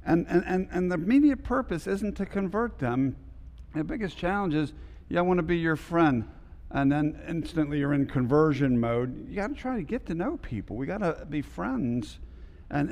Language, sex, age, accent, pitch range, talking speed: English, male, 50-69, American, 105-160 Hz, 195 wpm